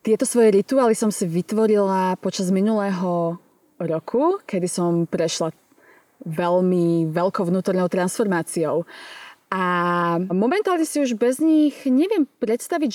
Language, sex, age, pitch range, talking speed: Slovak, female, 20-39, 180-250 Hz, 110 wpm